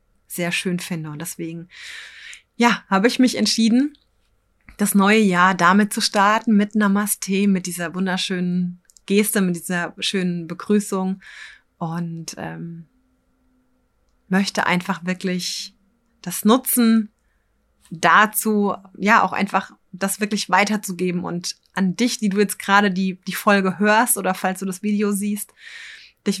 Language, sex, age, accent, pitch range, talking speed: German, female, 20-39, German, 180-205 Hz, 130 wpm